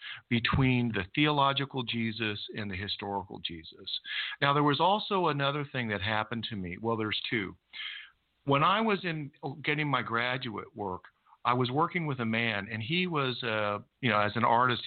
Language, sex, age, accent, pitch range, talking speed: English, male, 50-69, American, 115-150 Hz, 180 wpm